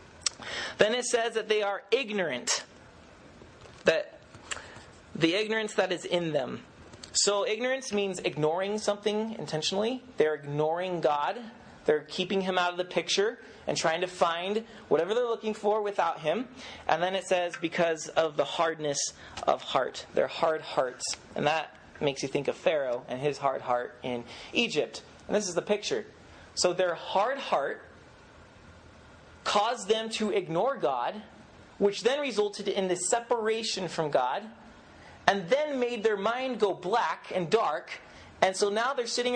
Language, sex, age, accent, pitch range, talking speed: English, male, 30-49, American, 165-215 Hz, 155 wpm